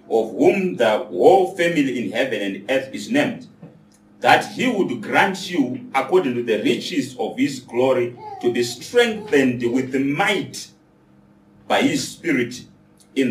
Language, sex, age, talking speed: English, male, 40-59, 150 wpm